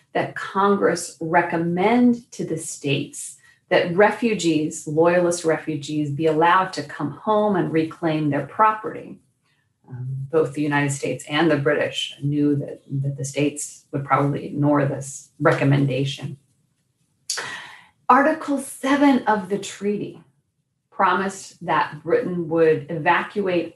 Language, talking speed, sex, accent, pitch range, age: English, 120 wpm, female, American, 145-185 Hz, 40-59